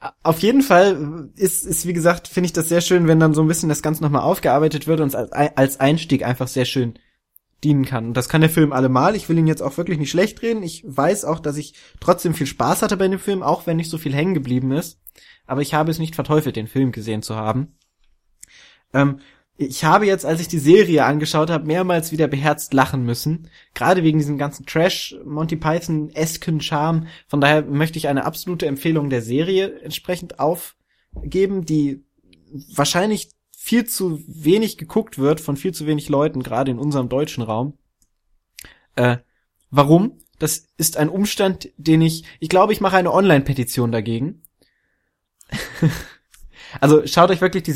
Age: 20-39